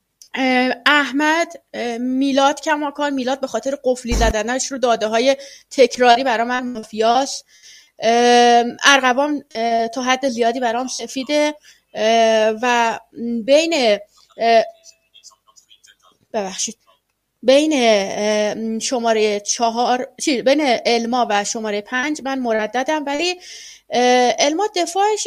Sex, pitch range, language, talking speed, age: female, 230-290 Hz, Persian, 90 wpm, 30-49